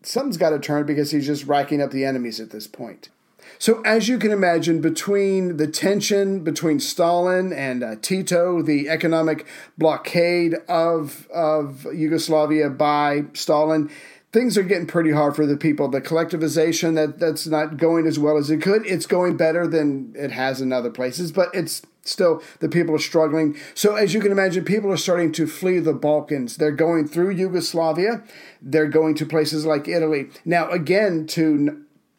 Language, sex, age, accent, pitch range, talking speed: English, male, 40-59, American, 155-180 Hz, 175 wpm